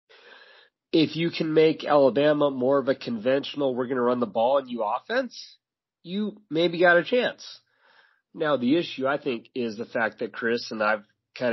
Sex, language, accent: male, English, American